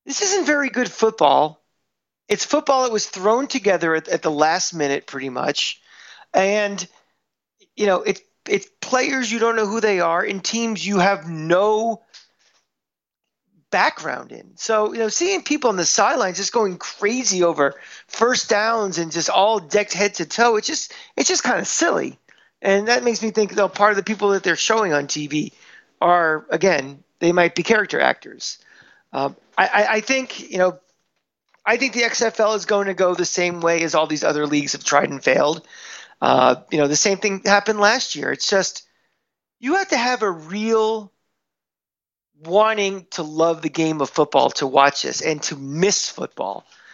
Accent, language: American, English